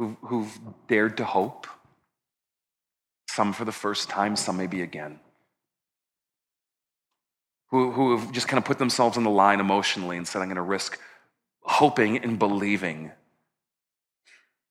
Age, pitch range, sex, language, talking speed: 40-59, 100-140 Hz, male, English, 135 wpm